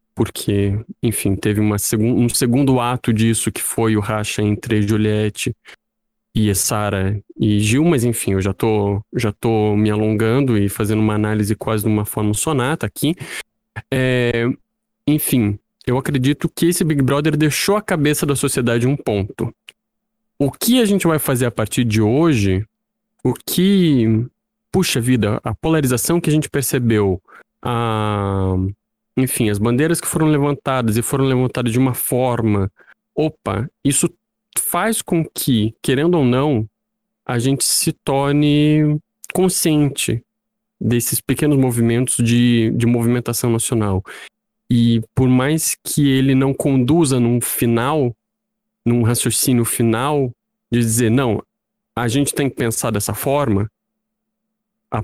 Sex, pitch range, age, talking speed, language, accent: male, 110-150 Hz, 20-39, 140 wpm, Portuguese, Brazilian